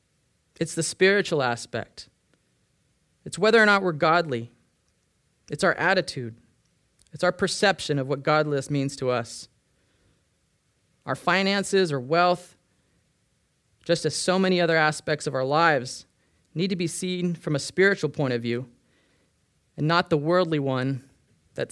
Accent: American